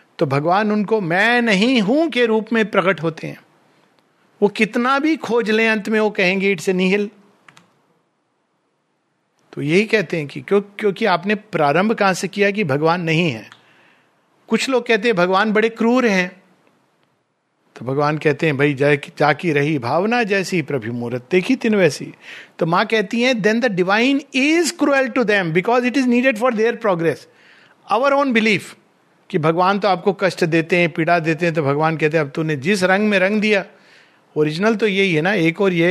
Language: Hindi